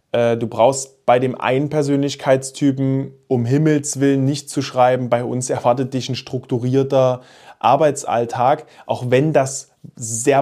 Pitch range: 125-145 Hz